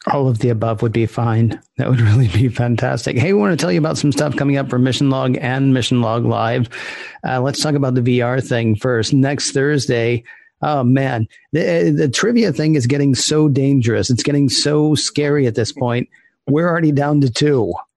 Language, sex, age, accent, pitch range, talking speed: English, male, 40-59, American, 115-140 Hz, 205 wpm